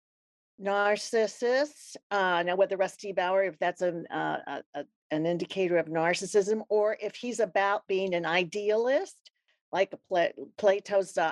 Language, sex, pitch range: English, female, 175-215 Hz